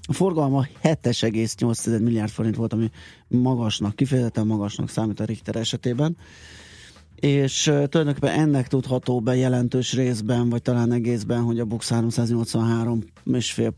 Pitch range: 105-120 Hz